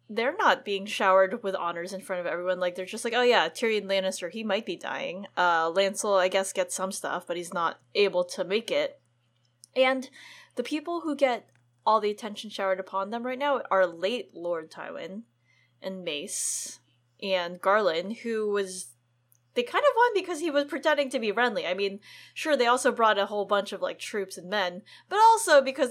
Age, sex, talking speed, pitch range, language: 10-29, female, 200 wpm, 185-285 Hz, English